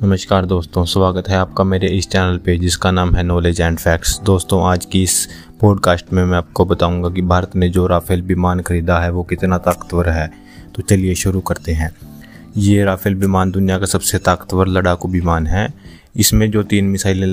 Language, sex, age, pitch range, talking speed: Hindi, male, 20-39, 90-110 Hz, 190 wpm